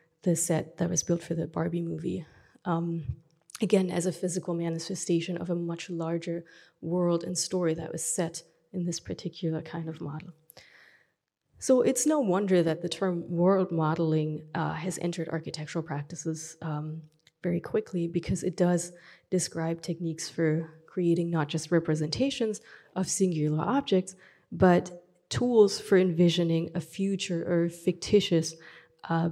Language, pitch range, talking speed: English, 165-185 Hz, 145 wpm